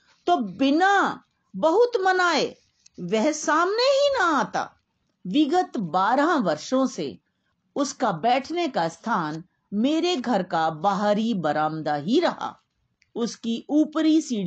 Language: Hindi